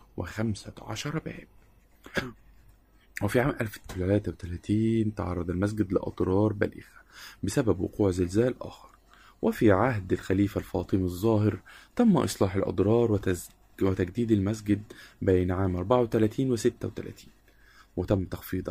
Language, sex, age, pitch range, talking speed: Arabic, male, 20-39, 95-120 Hz, 105 wpm